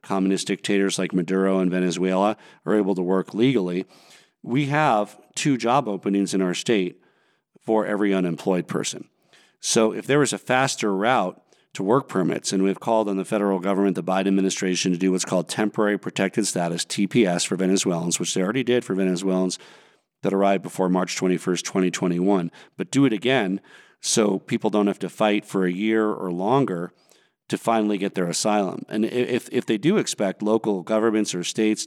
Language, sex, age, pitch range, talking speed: English, male, 40-59, 95-110 Hz, 180 wpm